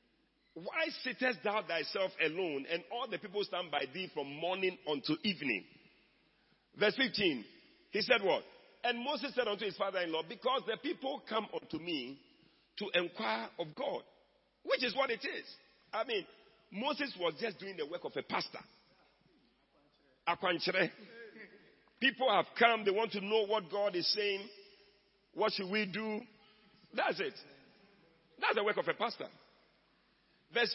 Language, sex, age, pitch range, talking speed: English, male, 50-69, 170-240 Hz, 155 wpm